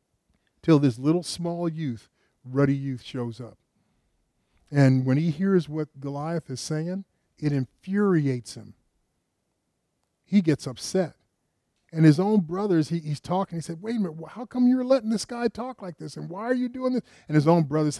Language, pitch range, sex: English, 130-180 Hz, male